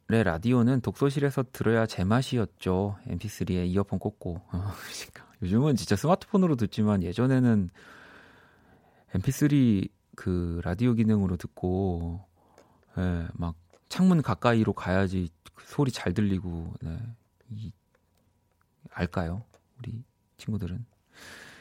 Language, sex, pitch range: Korean, male, 95-125 Hz